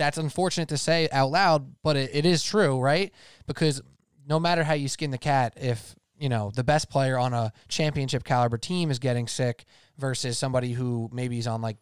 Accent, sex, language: American, male, English